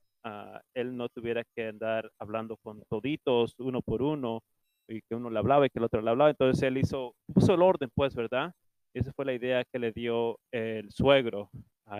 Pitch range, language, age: 115-135 Hz, English, 30-49